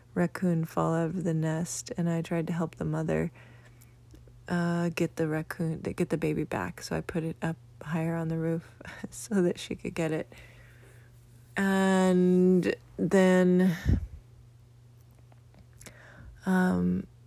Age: 30-49